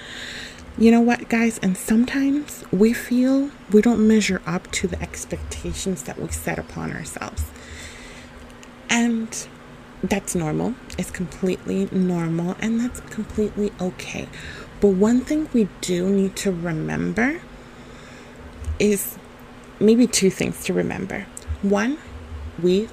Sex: female